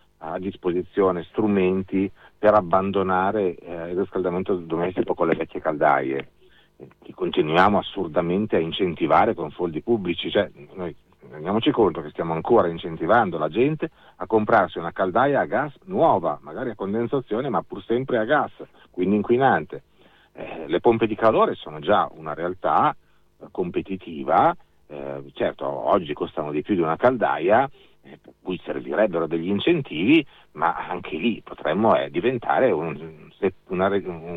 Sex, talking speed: male, 140 wpm